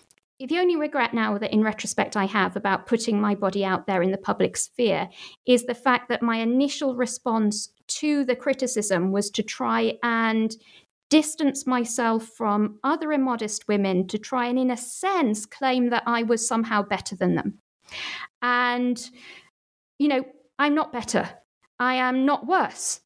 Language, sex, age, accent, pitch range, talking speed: English, female, 40-59, British, 210-270 Hz, 165 wpm